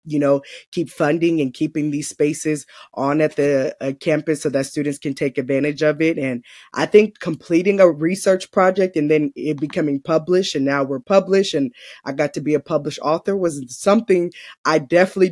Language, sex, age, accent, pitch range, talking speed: English, female, 20-39, American, 145-175 Hz, 190 wpm